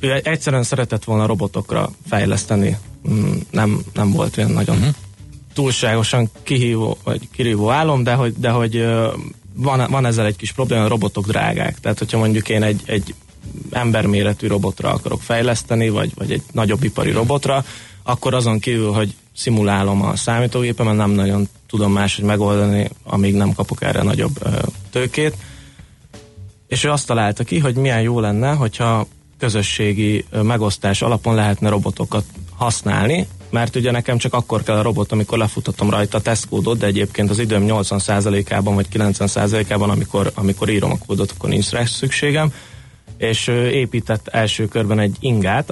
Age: 20-39